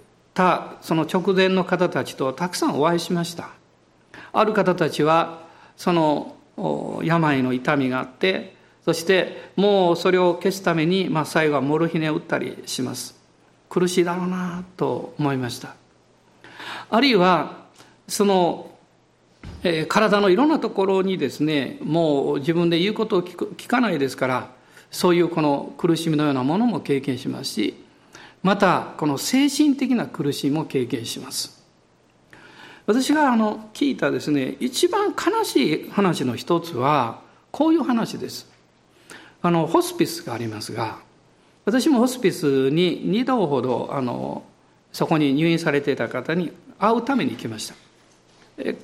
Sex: male